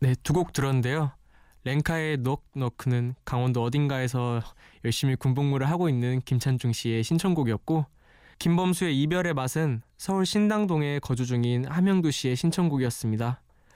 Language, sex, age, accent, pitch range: Korean, male, 20-39, native, 120-165 Hz